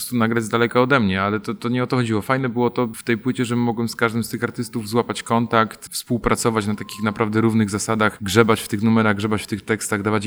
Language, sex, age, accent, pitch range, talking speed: Polish, male, 30-49, native, 105-120 Hz, 255 wpm